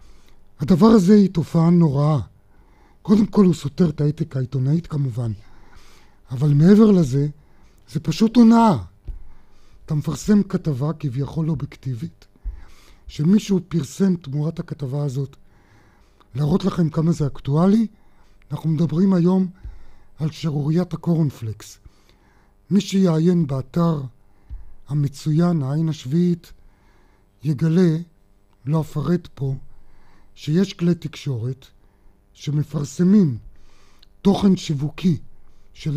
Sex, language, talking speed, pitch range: male, Hebrew, 95 wpm, 100-165 Hz